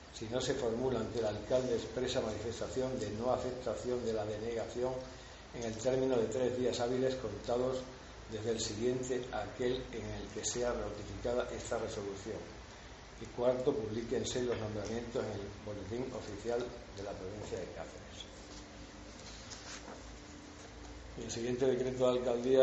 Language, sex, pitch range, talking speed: Spanish, male, 110-125 Hz, 145 wpm